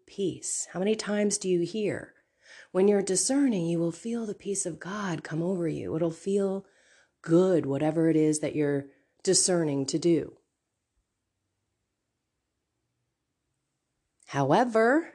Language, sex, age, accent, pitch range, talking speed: English, female, 30-49, American, 145-230 Hz, 125 wpm